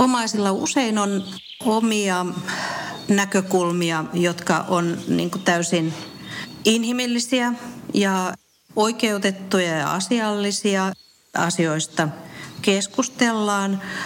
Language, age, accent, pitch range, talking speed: Finnish, 50-69, native, 165-205 Hz, 70 wpm